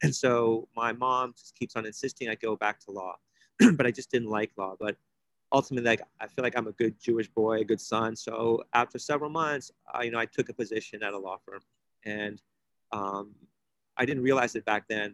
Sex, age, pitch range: male, 30-49, 110-125 Hz